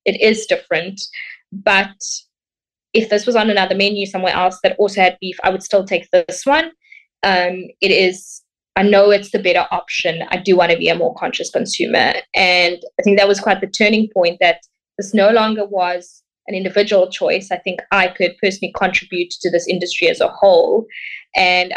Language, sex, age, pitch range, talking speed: English, female, 20-39, 180-210 Hz, 190 wpm